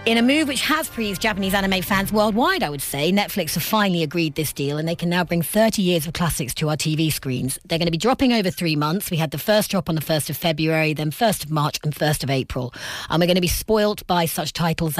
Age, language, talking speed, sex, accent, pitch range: 40-59, English, 270 wpm, female, British, 160-215 Hz